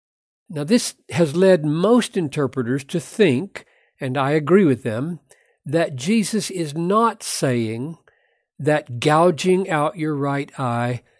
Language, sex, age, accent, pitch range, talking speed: English, male, 60-79, American, 135-200 Hz, 130 wpm